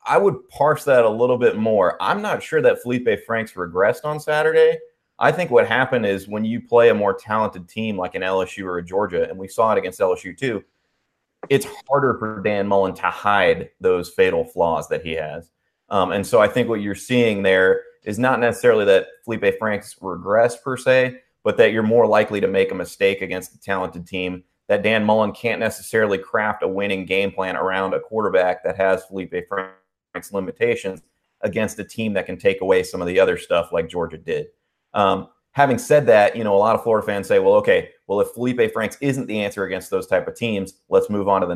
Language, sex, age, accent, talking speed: English, male, 30-49, American, 215 wpm